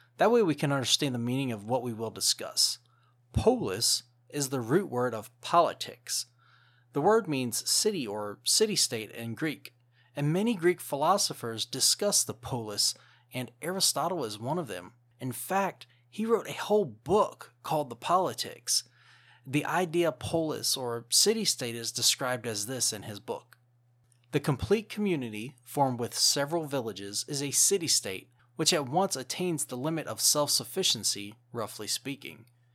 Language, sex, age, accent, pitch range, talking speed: English, male, 30-49, American, 120-170 Hz, 150 wpm